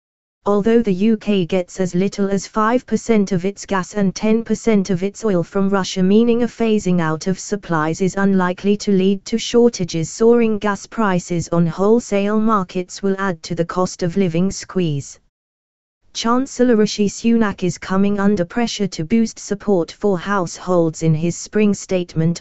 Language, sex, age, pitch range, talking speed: English, female, 20-39, 180-215 Hz, 160 wpm